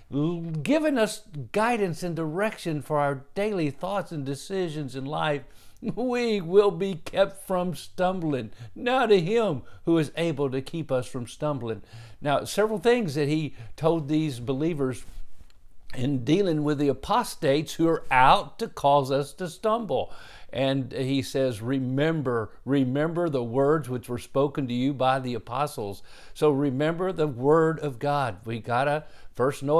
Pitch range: 135-175 Hz